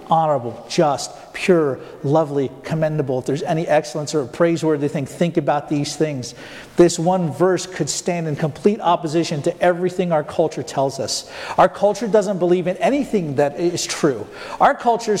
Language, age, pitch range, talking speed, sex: English, 50-69, 155-215 Hz, 160 wpm, male